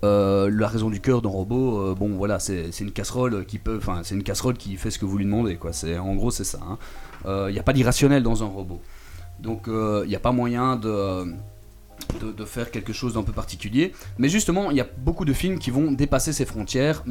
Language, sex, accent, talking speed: French, male, French, 250 wpm